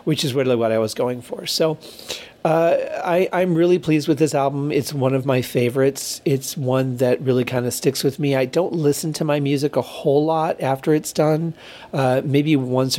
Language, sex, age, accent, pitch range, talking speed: English, male, 40-59, American, 120-140 Hz, 210 wpm